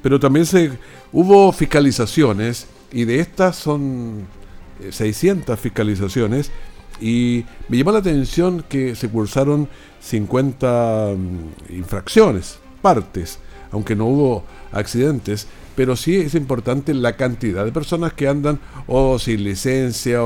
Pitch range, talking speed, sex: 105-140 Hz, 115 wpm, male